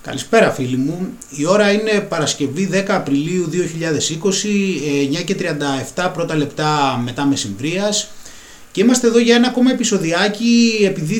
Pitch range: 145-210 Hz